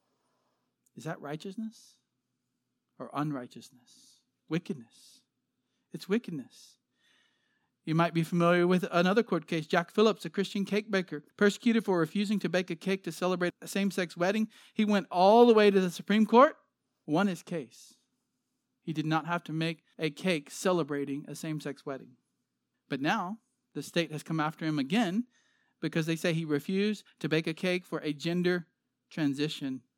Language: English